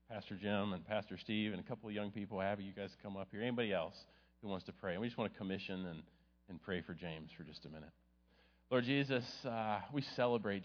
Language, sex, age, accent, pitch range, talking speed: English, male, 40-59, American, 90-120 Hz, 235 wpm